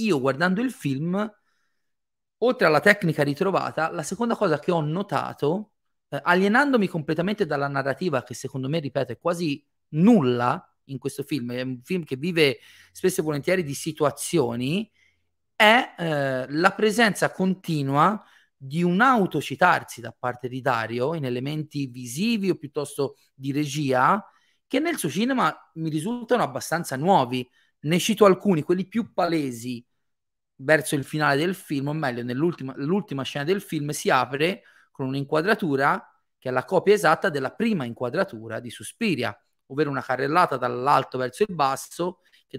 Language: Italian